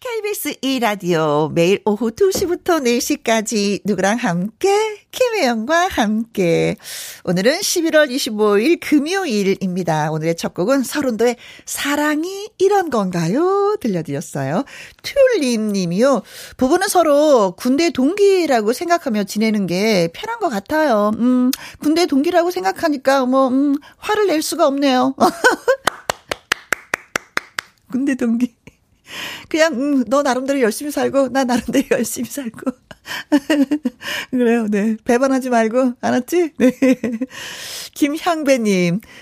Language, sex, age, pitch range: Korean, female, 40-59, 205-300 Hz